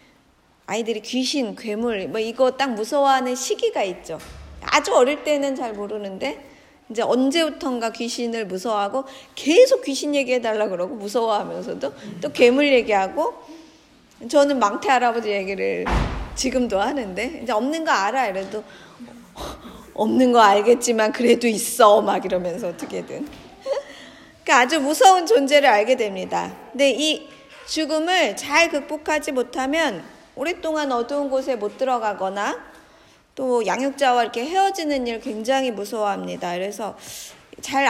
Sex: female